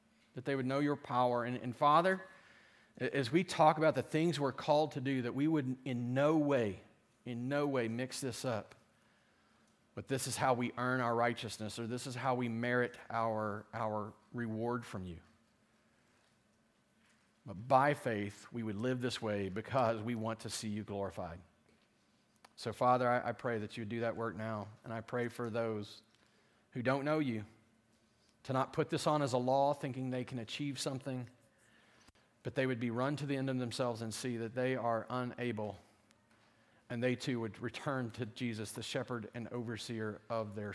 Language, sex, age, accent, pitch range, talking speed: English, male, 40-59, American, 110-130 Hz, 190 wpm